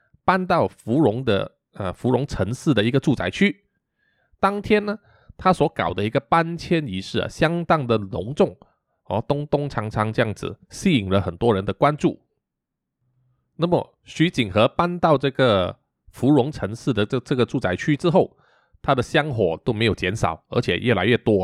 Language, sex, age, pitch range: Chinese, male, 20-39, 105-165 Hz